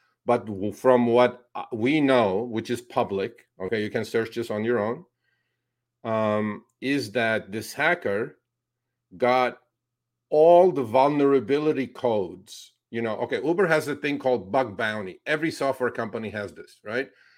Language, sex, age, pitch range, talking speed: English, male, 50-69, 120-150 Hz, 145 wpm